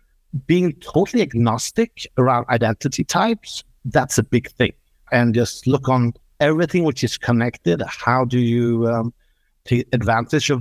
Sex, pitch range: male, 115-140 Hz